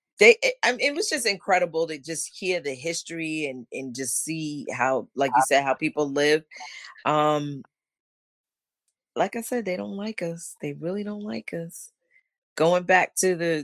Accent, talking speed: American, 175 wpm